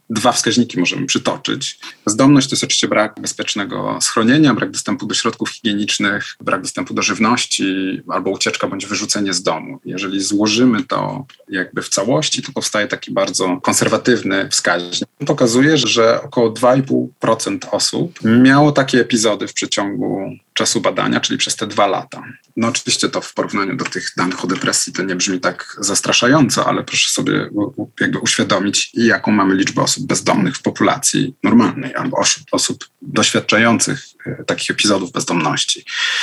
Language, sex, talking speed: Polish, male, 145 wpm